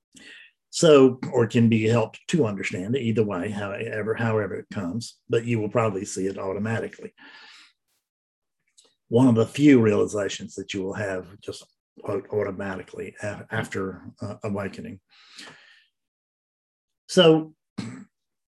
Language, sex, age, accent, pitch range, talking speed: English, male, 50-69, American, 115-155 Hz, 115 wpm